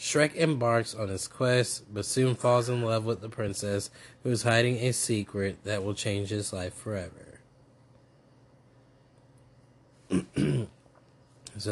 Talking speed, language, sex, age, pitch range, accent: 130 wpm, English, male, 20-39, 100-120 Hz, American